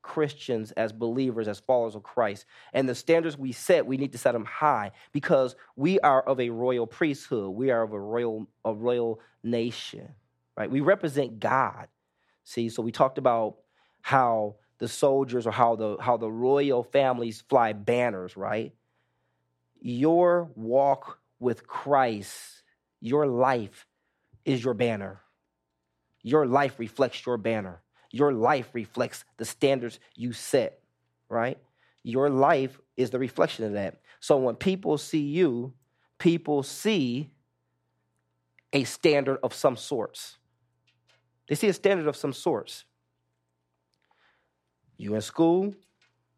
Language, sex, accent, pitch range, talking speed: English, male, American, 100-135 Hz, 135 wpm